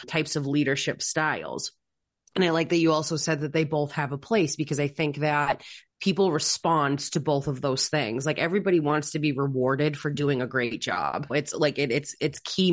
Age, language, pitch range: 30-49, English, 145-160 Hz